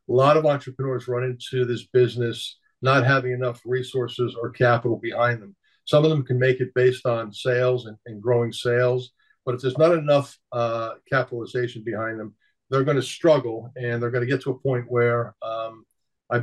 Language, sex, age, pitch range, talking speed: English, male, 50-69, 120-135 Hz, 195 wpm